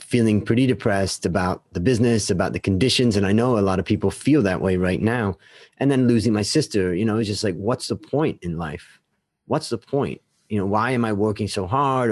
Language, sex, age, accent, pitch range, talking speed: English, male, 30-49, American, 95-115 Hz, 235 wpm